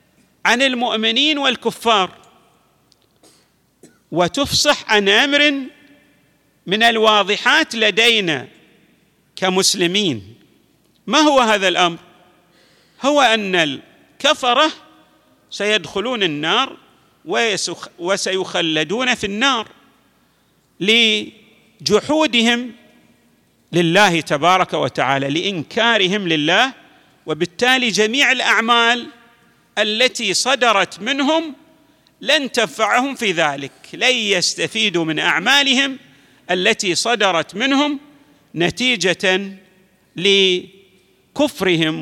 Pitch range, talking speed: 180-255 Hz, 65 wpm